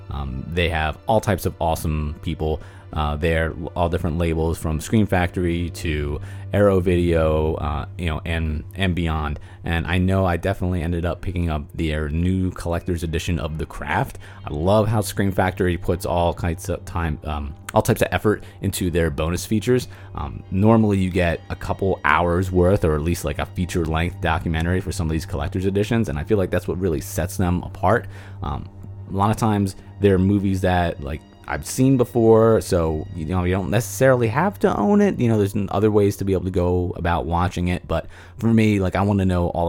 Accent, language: American, English